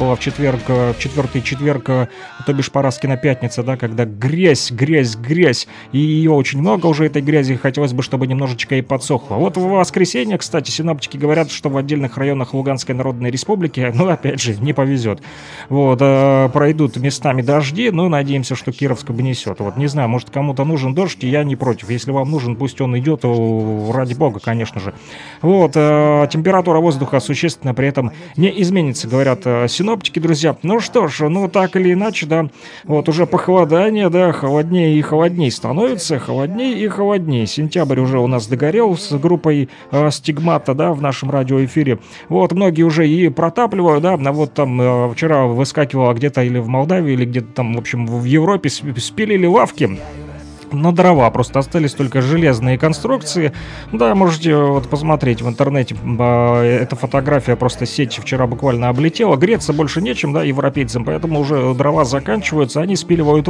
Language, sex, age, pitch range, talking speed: Russian, male, 30-49, 130-160 Hz, 165 wpm